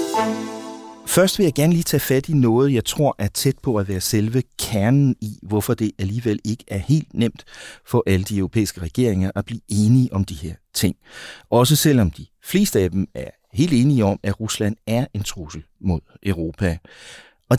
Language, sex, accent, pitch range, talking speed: Danish, male, native, 95-130 Hz, 190 wpm